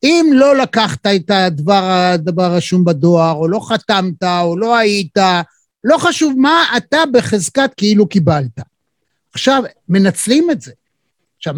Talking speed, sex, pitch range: 130 wpm, male, 190-285 Hz